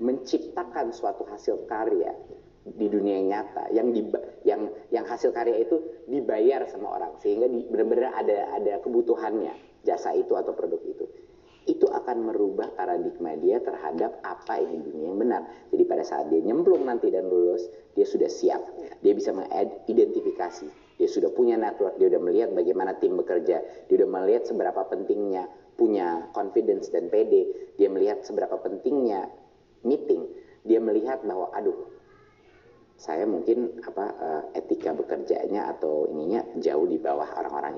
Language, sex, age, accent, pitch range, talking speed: Indonesian, male, 30-49, native, 375-410 Hz, 150 wpm